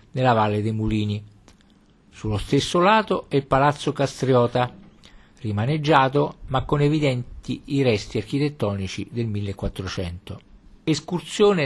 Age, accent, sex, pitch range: 50-69, native, male, 105-145 Hz